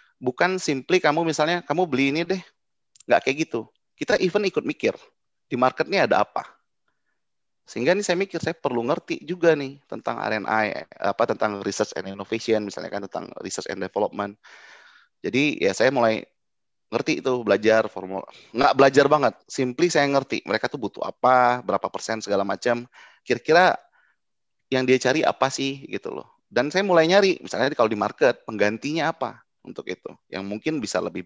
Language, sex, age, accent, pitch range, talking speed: Indonesian, male, 30-49, native, 105-160 Hz, 170 wpm